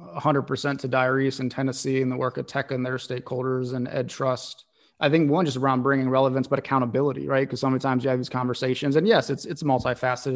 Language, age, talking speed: English, 30-49, 225 wpm